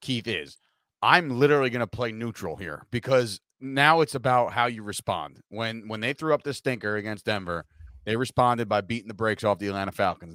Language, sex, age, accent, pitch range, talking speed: English, male, 30-49, American, 105-135 Hz, 205 wpm